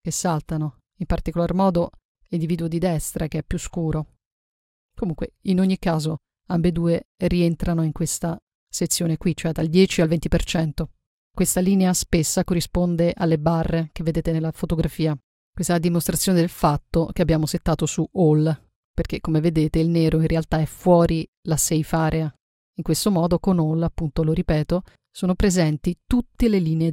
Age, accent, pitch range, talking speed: 40-59, native, 160-185 Hz, 165 wpm